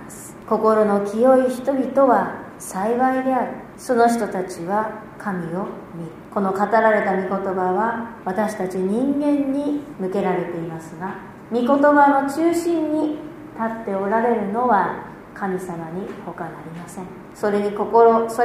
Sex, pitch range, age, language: female, 195-280 Hz, 40-59, Japanese